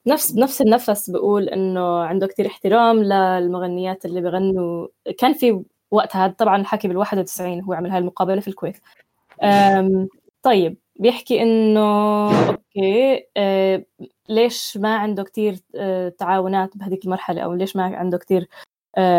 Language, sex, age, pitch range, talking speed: Arabic, female, 10-29, 185-225 Hz, 130 wpm